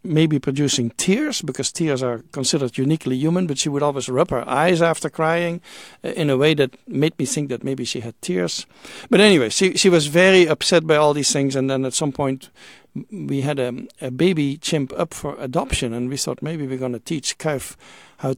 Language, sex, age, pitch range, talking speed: English, male, 60-79, 130-165 Hz, 210 wpm